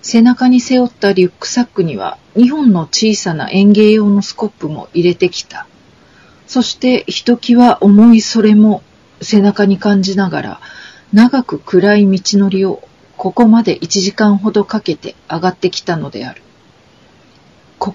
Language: Japanese